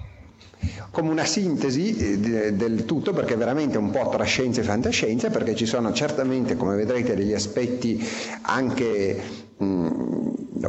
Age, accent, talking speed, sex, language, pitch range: 50-69, native, 125 wpm, male, Italian, 95-115 Hz